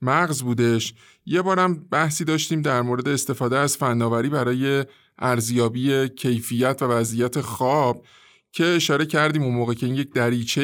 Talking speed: 145 wpm